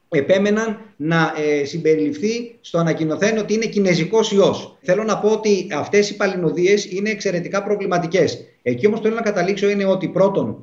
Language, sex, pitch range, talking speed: Greek, male, 155-210 Hz, 155 wpm